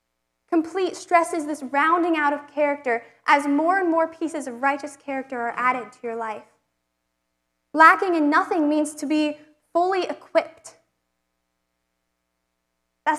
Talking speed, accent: 130 wpm, American